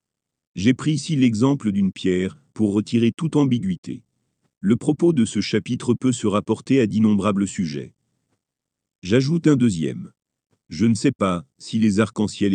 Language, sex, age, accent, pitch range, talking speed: French, male, 40-59, French, 100-135 Hz, 150 wpm